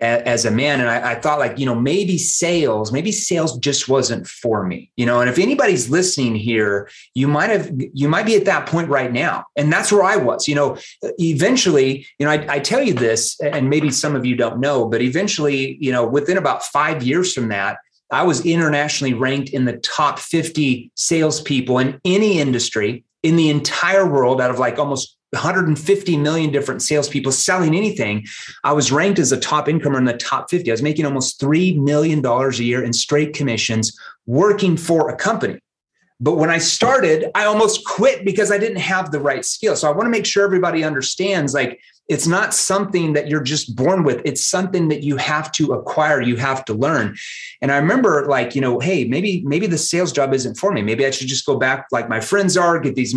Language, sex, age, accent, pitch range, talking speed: English, male, 30-49, American, 130-170 Hz, 210 wpm